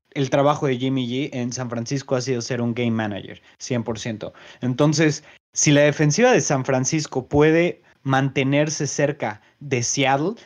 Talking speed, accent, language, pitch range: 155 wpm, Mexican, Spanish, 125-150 Hz